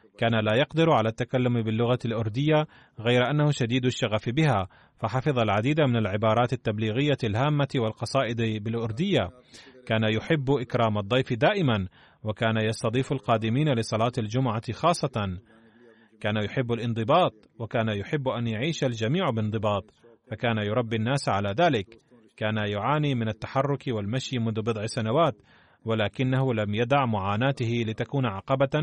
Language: Arabic